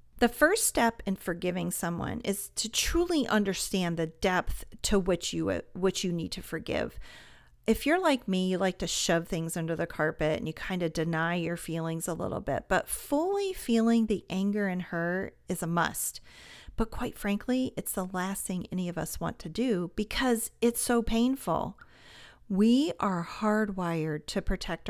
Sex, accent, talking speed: female, American, 180 wpm